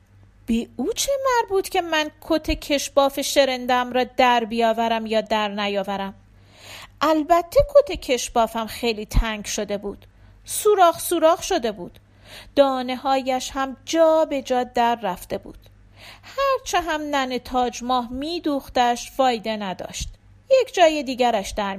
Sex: female